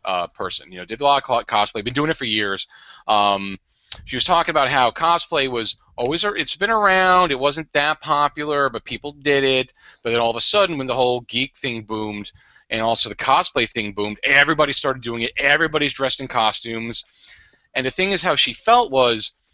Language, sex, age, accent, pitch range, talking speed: English, male, 40-59, American, 115-145 Hz, 210 wpm